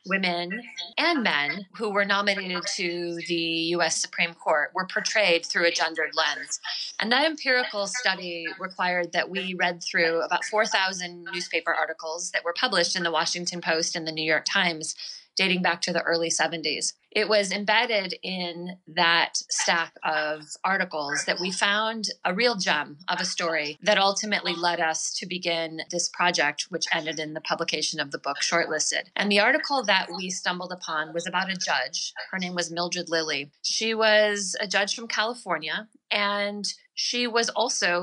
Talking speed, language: 170 wpm, English